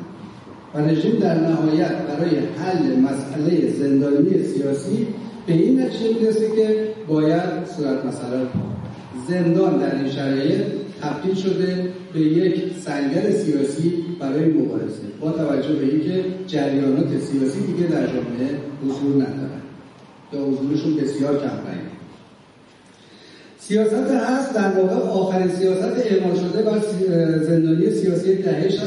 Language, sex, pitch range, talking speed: Persian, male, 150-195 Hz, 115 wpm